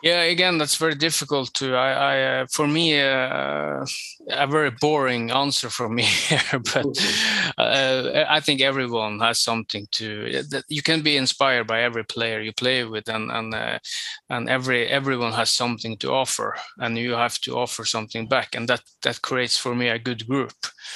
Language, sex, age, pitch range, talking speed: Dutch, male, 20-39, 120-145 Hz, 180 wpm